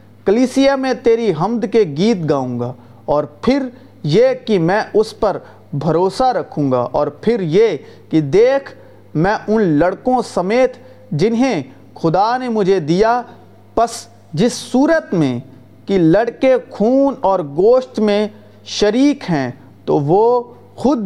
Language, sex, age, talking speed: Urdu, male, 40-59, 135 wpm